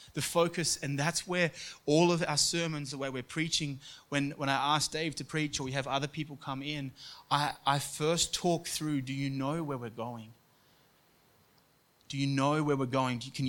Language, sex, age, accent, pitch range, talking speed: English, male, 20-39, Australian, 120-150 Hz, 205 wpm